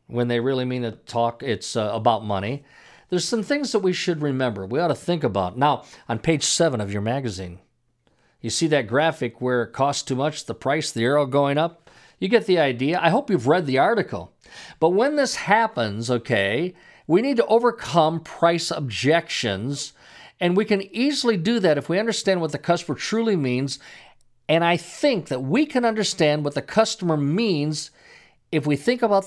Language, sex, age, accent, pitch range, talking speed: English, male, 50-69, American, 125-195 Hz, 195 wpm